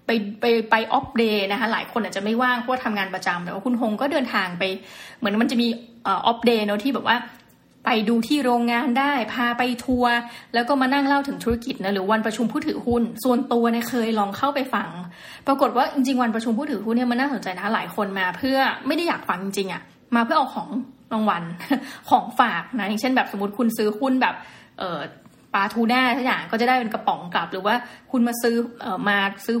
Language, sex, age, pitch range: Thai, female, 20-39, 215-265 Hz